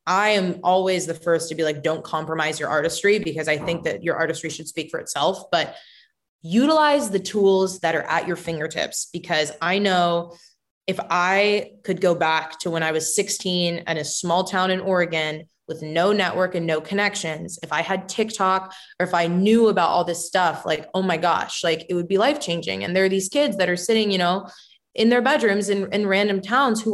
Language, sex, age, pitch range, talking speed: English, female, 20-39, 165-205 Hz, 210 wpm